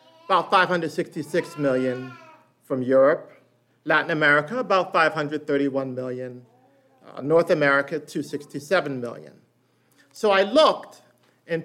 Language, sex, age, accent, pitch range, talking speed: English, male, 50-69, American, 145-215 Hz, 100 wpm